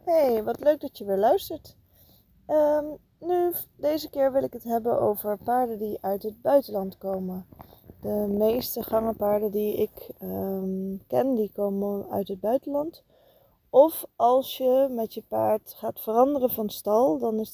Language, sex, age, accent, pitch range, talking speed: Dutch, female, 20-39, Dutch, 195-230 Hz, 150 wpm